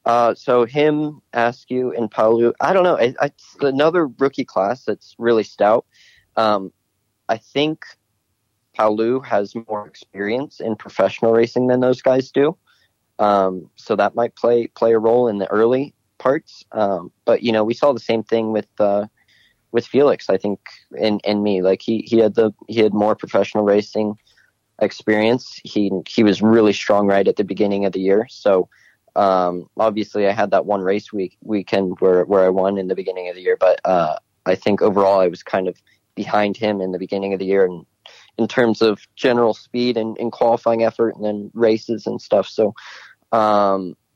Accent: American